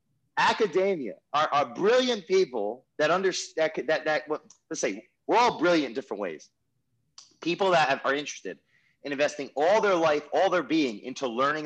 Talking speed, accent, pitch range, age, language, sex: 170 wpm, American, 135-185 Hz, 30-49, English, male